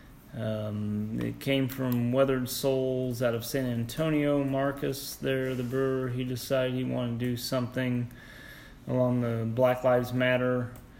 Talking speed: 140 wpm